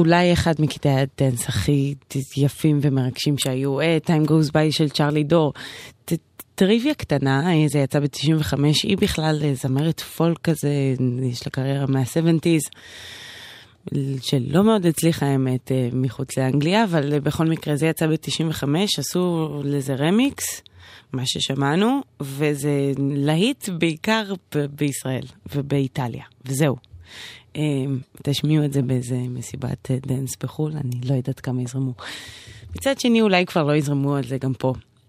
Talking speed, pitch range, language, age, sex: 125 wpm, 130-160 Hz, Hebrew, 20-39, female